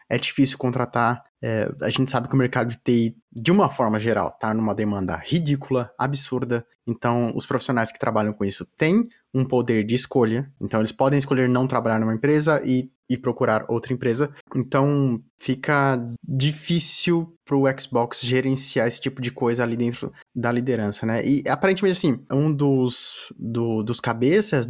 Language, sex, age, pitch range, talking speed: Portuguese, male, 20-39, 120-150 Hz, 170 wpm